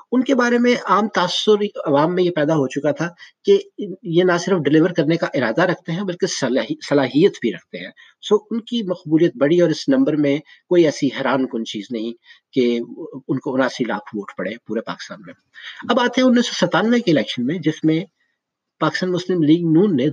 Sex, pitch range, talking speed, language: male, 150-200 Hz, 205 wpm, Urdu